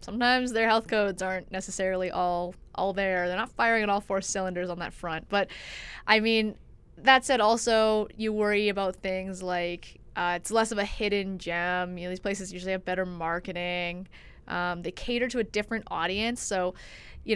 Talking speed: 185 wpm